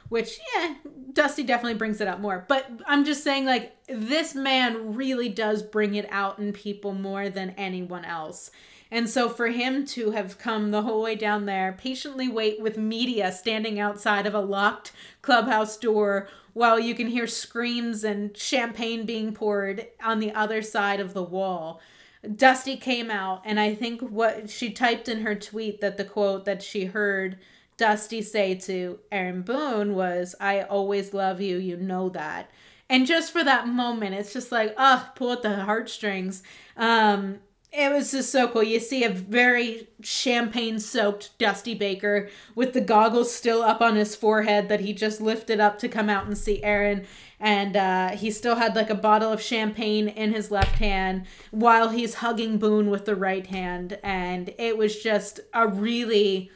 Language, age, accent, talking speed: English, 30-49, American, 180 wpm